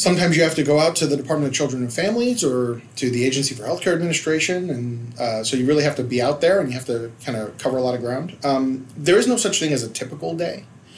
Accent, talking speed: American, 280 wpm